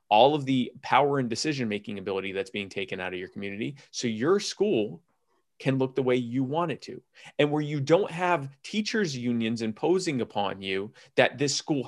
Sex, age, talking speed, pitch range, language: male, 30-49, 190 wpm, 110-175 Hz, English